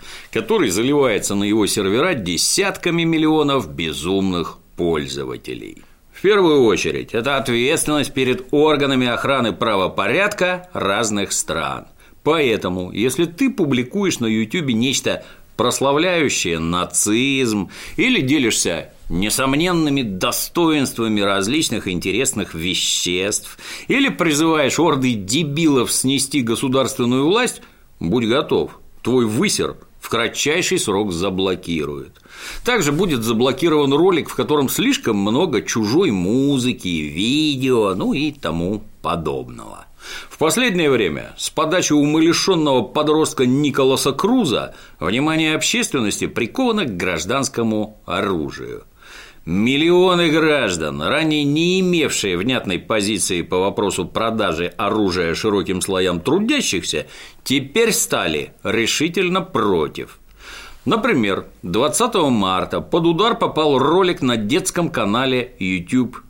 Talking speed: 100 wpm